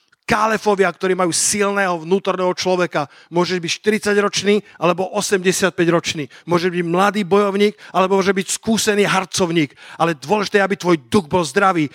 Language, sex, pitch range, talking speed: Slovak, male, 170-210 Hz, 145 wpm